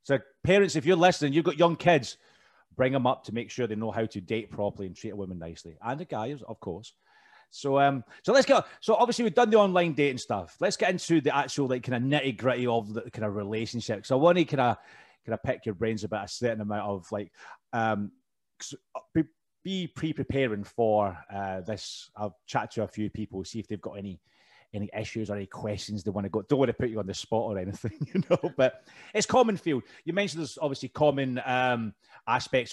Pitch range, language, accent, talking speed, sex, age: 110-150 Hz, English, British, 230 wpm, male, 30-49